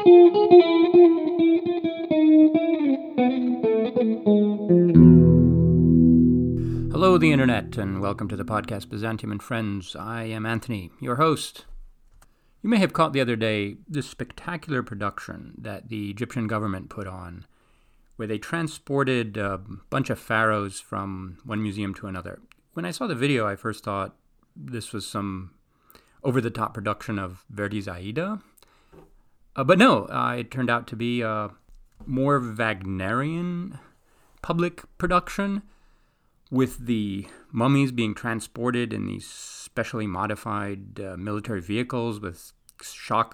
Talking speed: 120 wpm